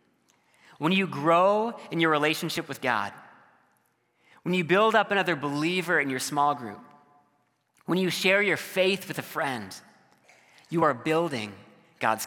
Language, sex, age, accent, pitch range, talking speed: English, male, 30-49, American, 130-175 Hz, 145 wpm